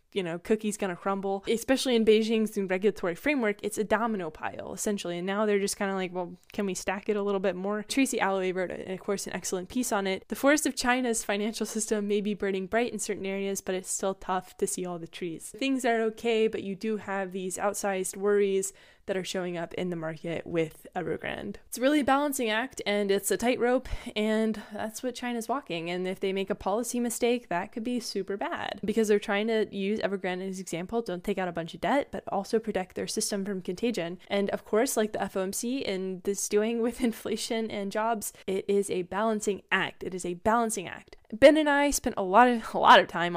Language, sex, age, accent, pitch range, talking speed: English, female, 10-29, American, 185-220 Hz, 230 wpm